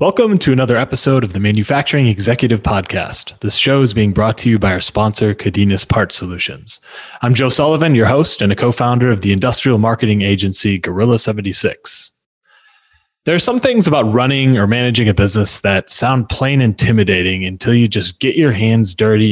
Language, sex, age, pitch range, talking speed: English, male, 20-39, 100-130 Hz, 180 wpm